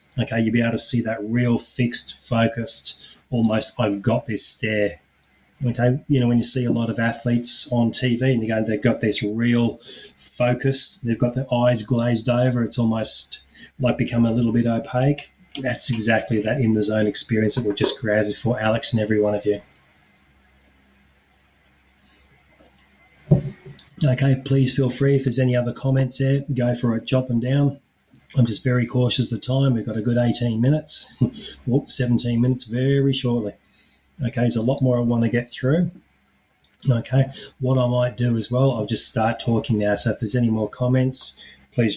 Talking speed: 185 wpm